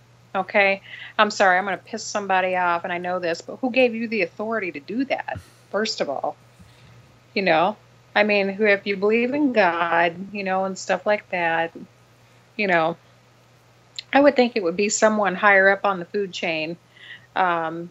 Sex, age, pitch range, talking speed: female, 40-59, 175-220 Hz, 190 wpm